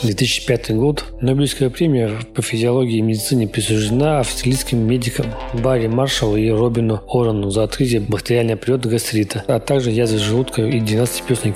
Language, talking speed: Russian, 145 wpm